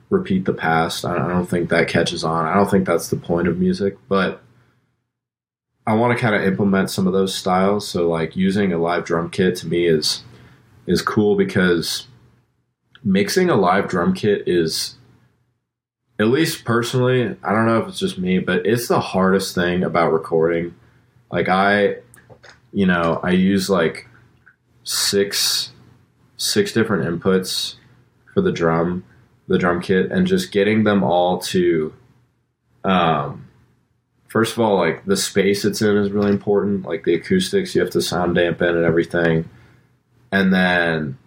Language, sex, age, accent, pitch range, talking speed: English, male, 20-39, American, 85-120 Hz, 160 wpm